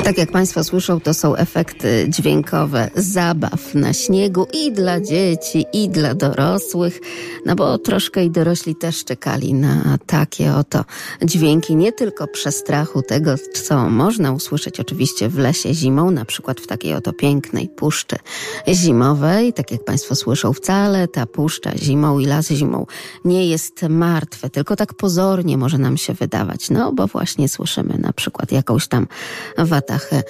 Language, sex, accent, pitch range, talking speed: Polish, female, native, 145-190 Hz, 155 wpm